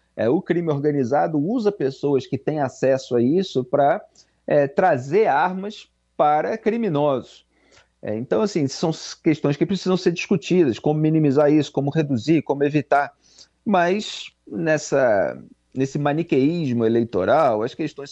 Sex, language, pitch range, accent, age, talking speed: male, Portuguese, 130-190 Hz, Brazilian, 40-59, 115 wpm